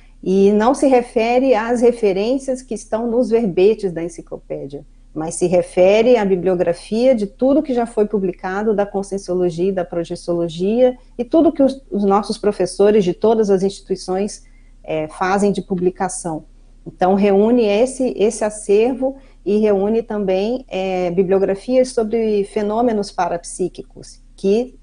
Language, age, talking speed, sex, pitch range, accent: Portuguese, 40-59, 140 wpm, female, 175-215 Hz, Brazilian